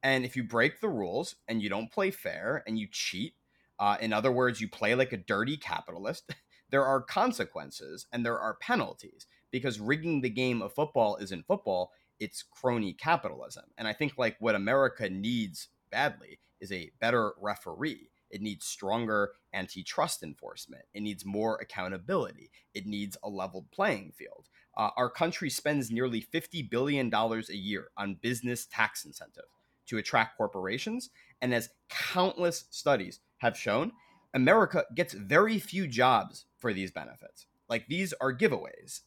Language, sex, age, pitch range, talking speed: English, male, 30-49, 110-150 Hz, 160 wpm